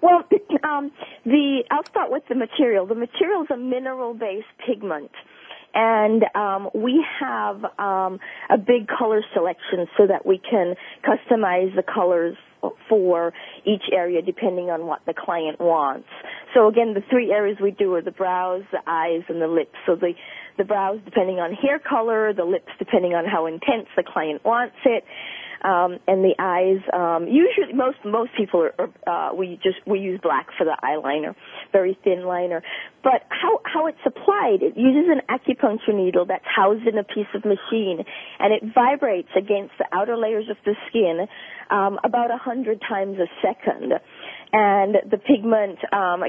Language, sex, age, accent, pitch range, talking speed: English, female, 40-59, American, 185-240 Hz, 170 wpm